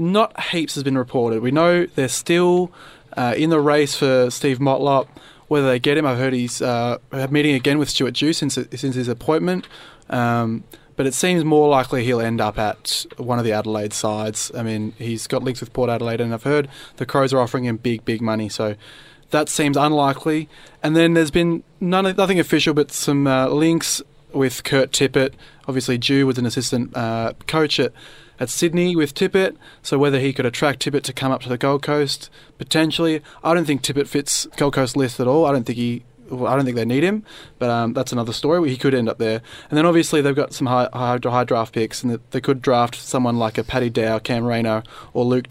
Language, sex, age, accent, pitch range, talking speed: English, male, 20-39, Australian, 120-150 Hz, 220 wpm